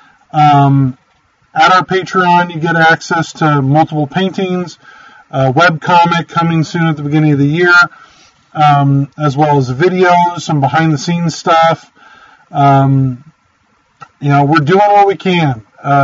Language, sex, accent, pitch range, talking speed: English, male, American, 145-180 Hz, 145 wpm